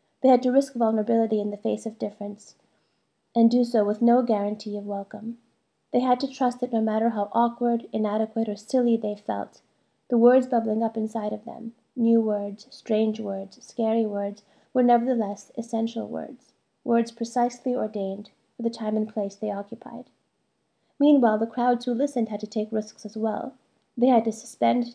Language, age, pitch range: English, 30-49, 210-235 Hz